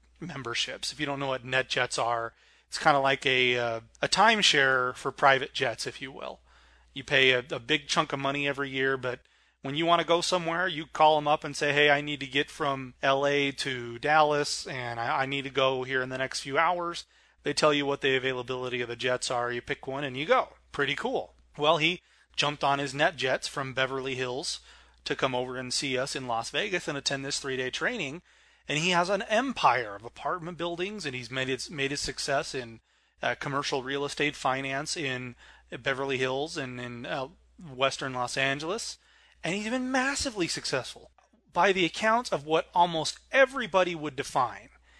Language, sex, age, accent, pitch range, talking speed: English, male, 30-49, American, 130-165 Hz, 205 wpm